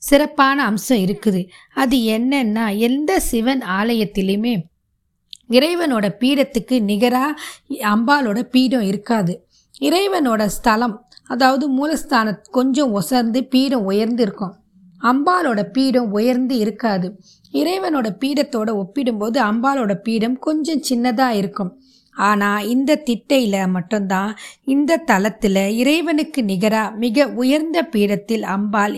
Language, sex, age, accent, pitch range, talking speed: Tamil, female, 20-39, native, 205-265 Hz, 95 wpm